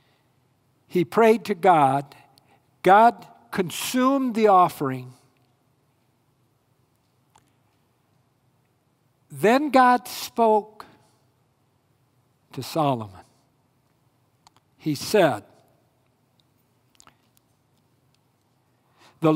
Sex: male